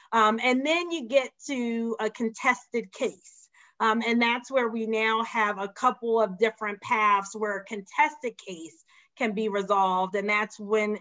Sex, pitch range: female, 205-235 Hz